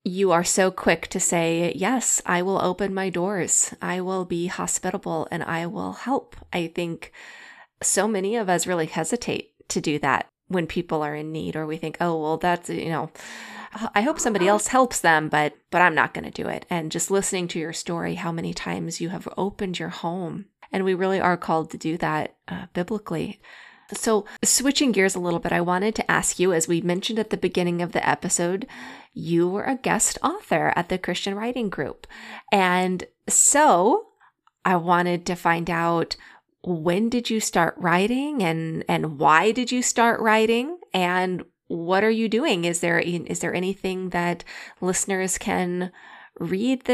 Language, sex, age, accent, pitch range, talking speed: English, female, 20-39, American, 170-220 Hz, 185 wpm